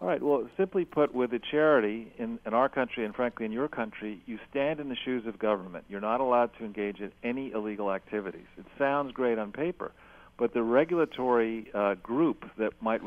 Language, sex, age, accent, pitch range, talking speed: English, male, 50-69, American, 110-135 Hz, 205 wpm